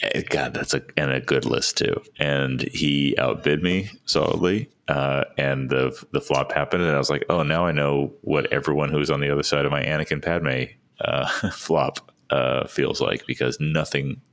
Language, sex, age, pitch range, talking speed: English, male, 30-49, 65-75 Hz, 190 wpm